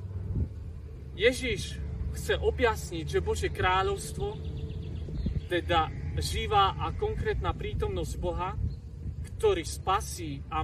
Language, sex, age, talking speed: Slovak, male, 40-59, 85 wpm